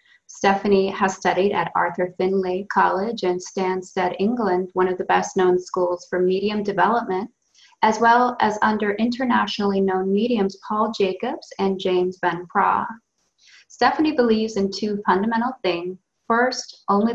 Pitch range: 185-215 Hz